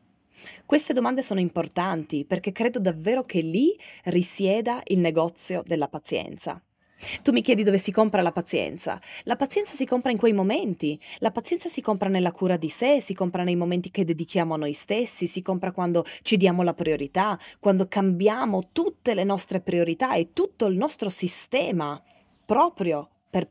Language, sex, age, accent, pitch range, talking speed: Italian, female, 20-39, native, 170-235 Hz, 170 wpm